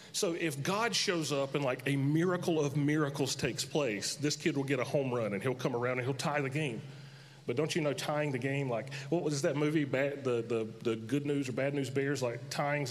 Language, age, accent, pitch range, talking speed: English, 30-49, American, 140-165 Hz, 245 wpm